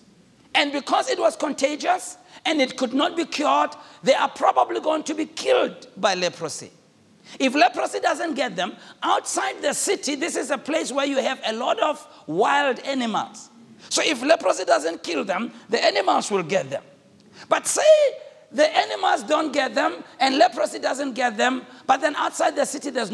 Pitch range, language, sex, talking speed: 240-320 Hz, English, male, 180 wpm